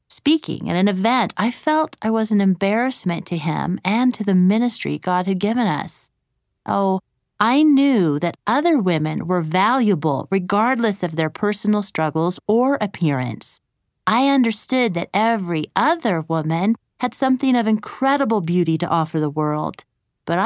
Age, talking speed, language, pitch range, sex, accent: 30-49, 150 wpm, English, 170-230 Hz, female, American